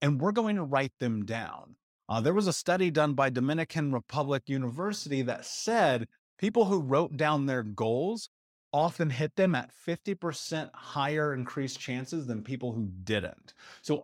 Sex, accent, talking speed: male, American, 160 wpm